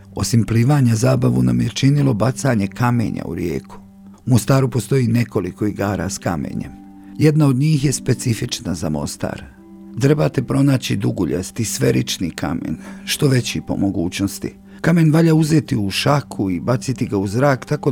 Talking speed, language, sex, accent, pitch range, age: 145 wpm, Croatian, male, native, 100-130 Hz, 50-69